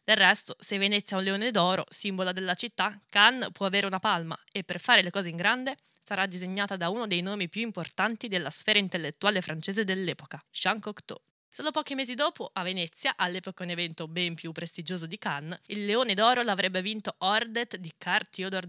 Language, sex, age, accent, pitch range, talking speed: Italian, female, 20-39, native, 175-210 Hz, 195 wpm